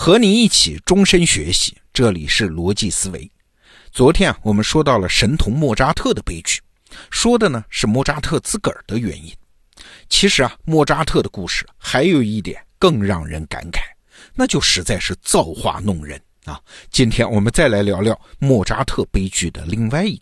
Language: Chinese